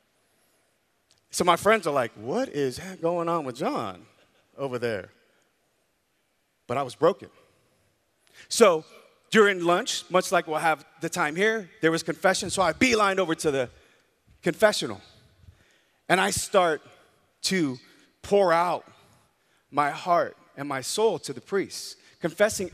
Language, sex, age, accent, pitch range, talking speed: English, male, 40-59, American, 165-220 Hz, 135 wpm